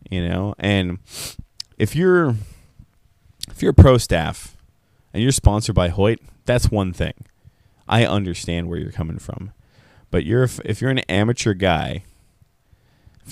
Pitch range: 90-115 Hz